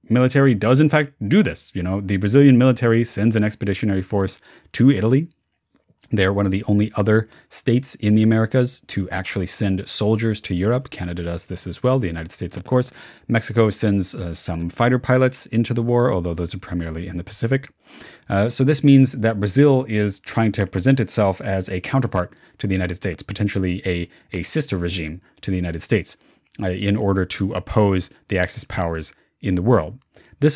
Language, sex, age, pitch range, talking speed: English, male, 30-49, 90-115 Hz, 190 wpm